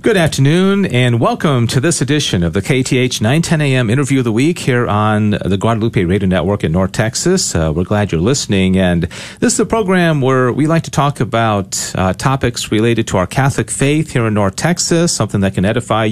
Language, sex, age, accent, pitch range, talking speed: English, male, 40-59, American, 105-135 Hz, 210 wpm